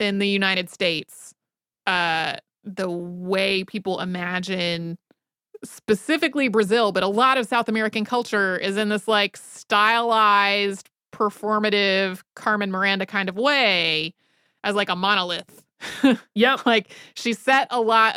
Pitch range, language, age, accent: 195-240 Hz, English, 30-49, American